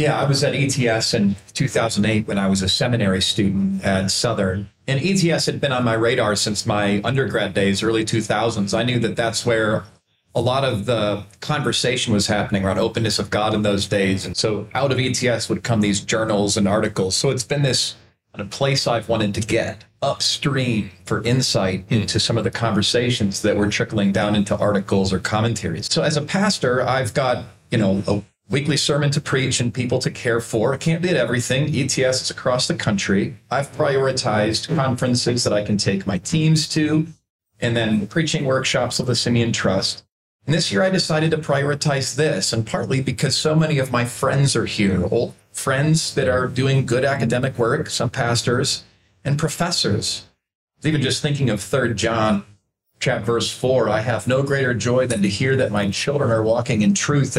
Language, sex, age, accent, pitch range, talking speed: English, male, 40-59, American, 105-135 Hz, 190 wpm